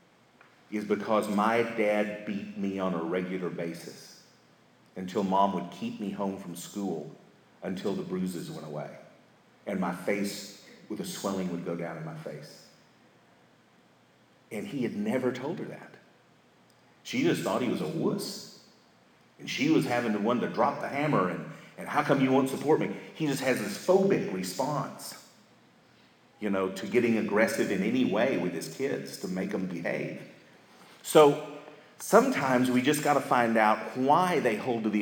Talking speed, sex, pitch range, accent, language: 175 wpm, male, 100-145 Hz, American, English